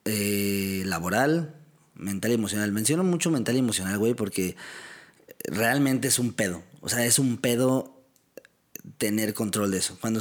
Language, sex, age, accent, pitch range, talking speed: Spanish, male, 30-49, Mexican, 100-120 Hz, 155 wpm